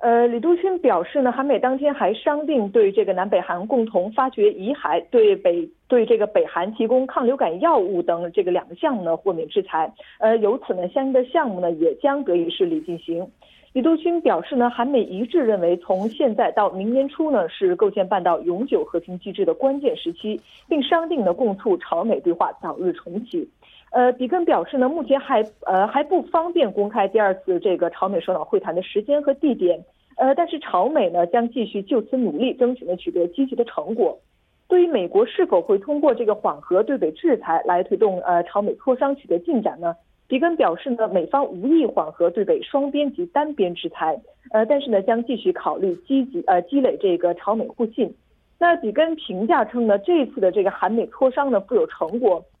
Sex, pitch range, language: female, 200-310 Hz, Korean